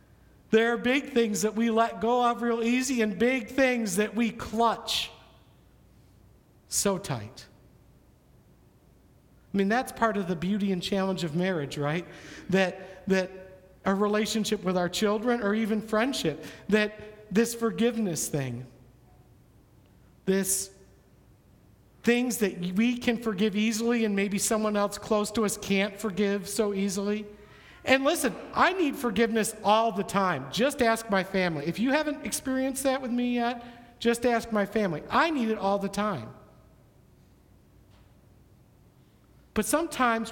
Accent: American